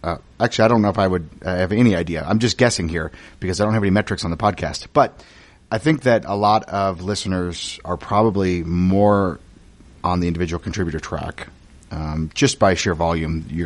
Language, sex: English, male